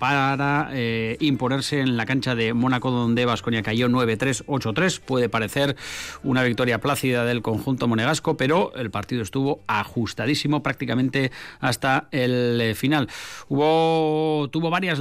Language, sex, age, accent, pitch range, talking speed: Spanish, male, 30-49, Spanish, 125-150 Hz, 130 wpm